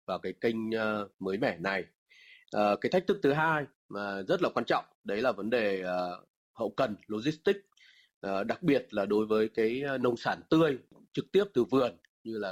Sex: male